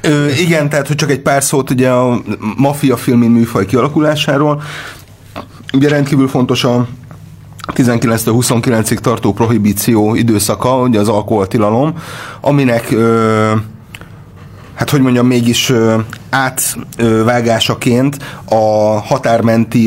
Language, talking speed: Hungarian, 110 wpm